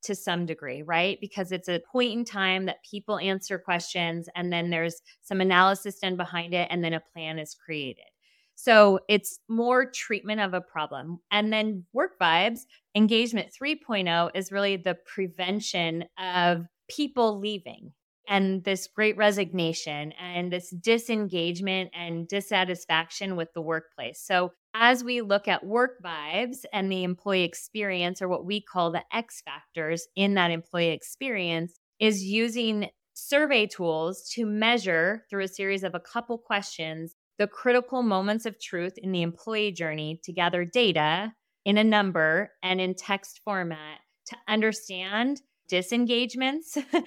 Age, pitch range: 20-39, 175-215 Hz